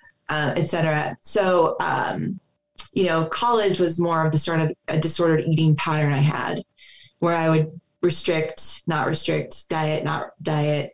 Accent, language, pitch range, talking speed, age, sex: American, English, 155-180 Hz, 155 wpm, 30-49, female